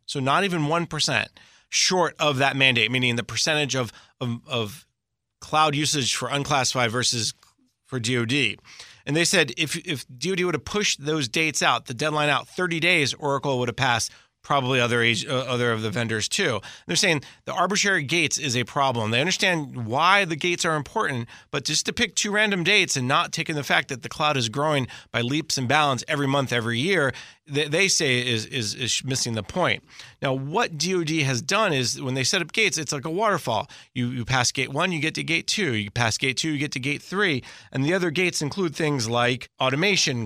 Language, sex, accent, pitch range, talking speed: English, male, American, 125-165 Hz, 215 wpm